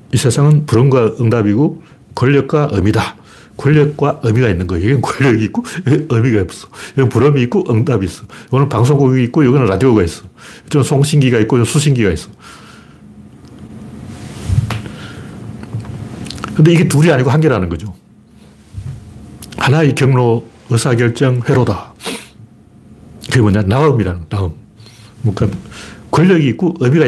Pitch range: 115-155 Hz